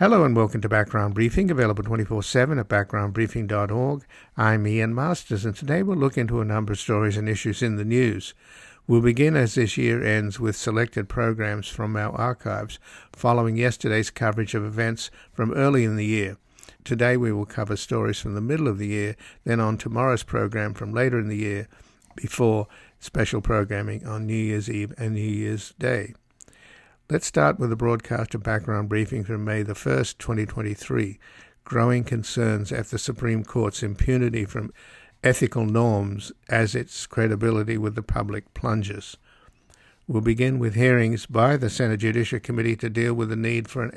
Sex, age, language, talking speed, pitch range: male, 60-79, English, 170 wpm, 105-120 Hz